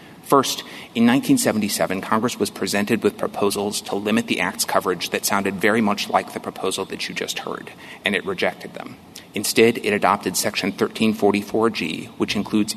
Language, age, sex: English, 30-49, male